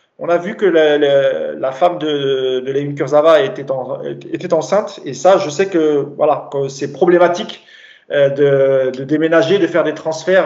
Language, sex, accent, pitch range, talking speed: French, male, French, 135-175 Hz, 185 wpm